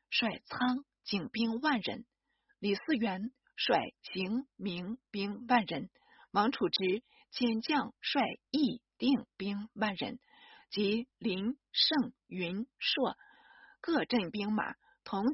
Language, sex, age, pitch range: Chinese, female, 50-69, 205-280 Hz